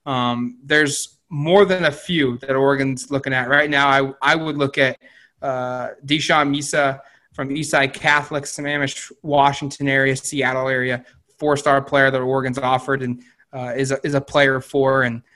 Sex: male